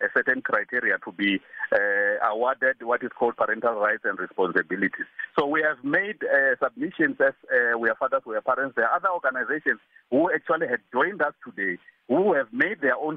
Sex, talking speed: male, 195 wpm